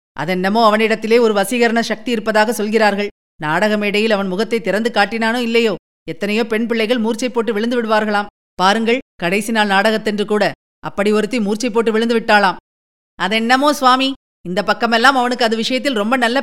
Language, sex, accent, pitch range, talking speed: Tamil, female, native, 205-260 Hz, 145 wpm